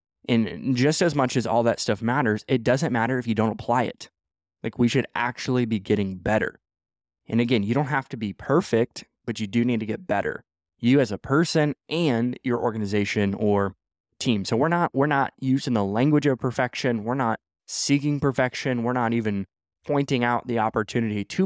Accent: American